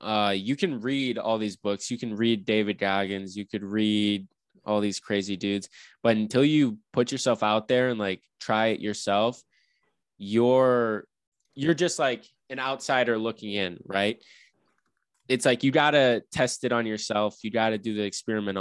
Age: 20-39